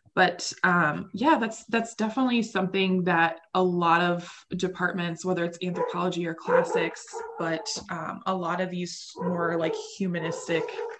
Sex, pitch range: female, 170-200 Hz